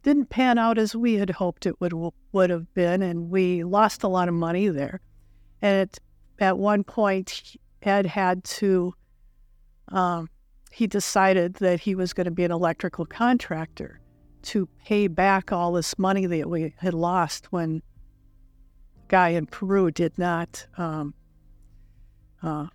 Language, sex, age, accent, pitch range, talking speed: English, female, 50-69, American, 170-200 Hz, 155 wpm